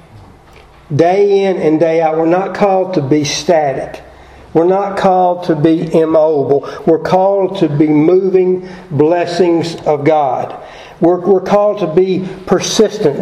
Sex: male